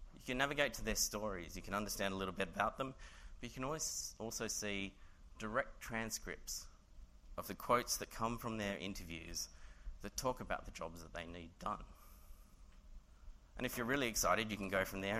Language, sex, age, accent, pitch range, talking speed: English, male, 30-49, Australian, 75-105 Hz, 195 wpm